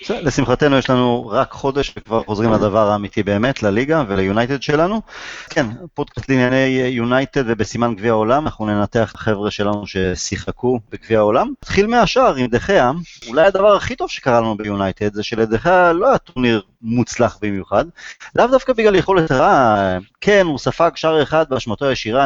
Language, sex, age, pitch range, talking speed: Hebrew, male, 30-49, 105-150 Hz, 160 wpm